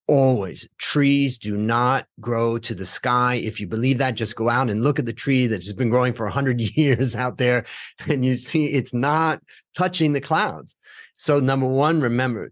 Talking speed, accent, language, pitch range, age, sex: 200 wpm, American, English, 110-135 Hz, 40-59, male